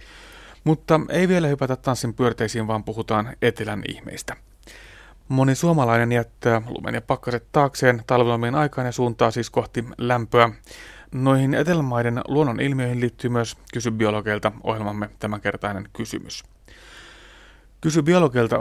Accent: native